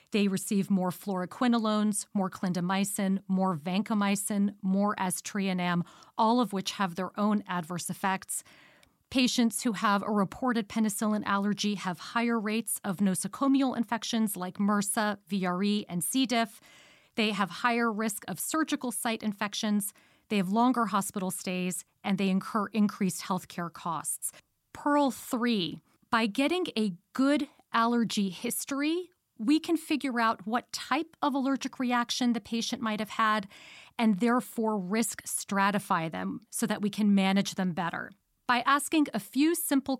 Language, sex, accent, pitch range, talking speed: English, female, American, 195-240 Hz, 145 wpm